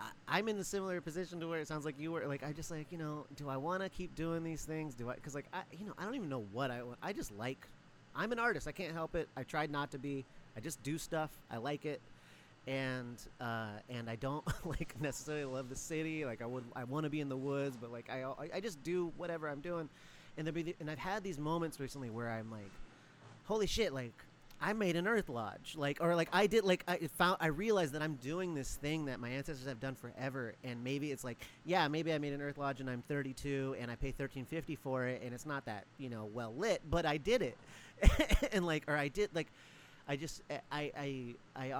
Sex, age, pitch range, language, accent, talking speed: male, 30-49, 120-160 Hz, English, American, 250 wpm